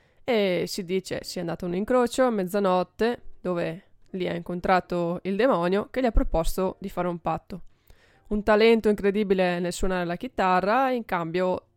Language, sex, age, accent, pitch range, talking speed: Italian, female, 20-39, native, 180-210 Hz, 175 wpm